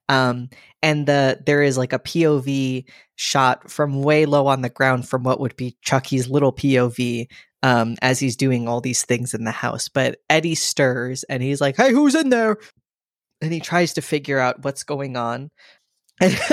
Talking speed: 190 wpm